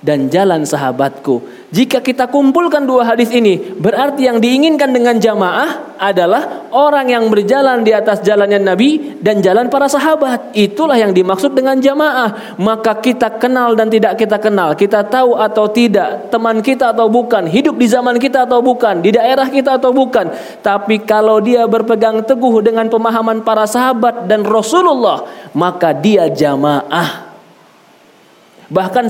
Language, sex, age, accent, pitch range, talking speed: Indonesian, male, 20-39, native, 205-255 Hz, 150 wpm